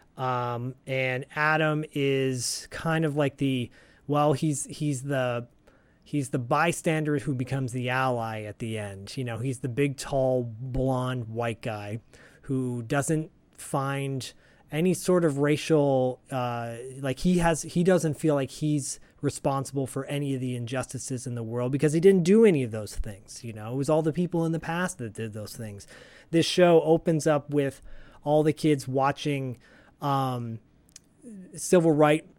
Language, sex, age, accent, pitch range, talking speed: English, male, 30-49, American, 125-150 Hz, 165 wpm